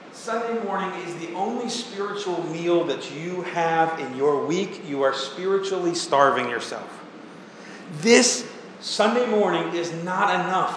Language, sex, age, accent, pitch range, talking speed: English, male, 40-59, American, 165-215 Hz, 135 wpm